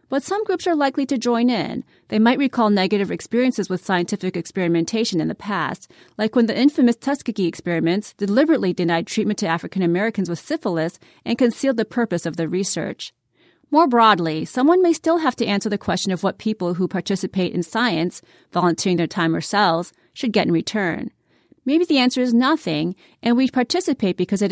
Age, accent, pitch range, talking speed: 30-49, American, 175-245 Hz, 185 wpm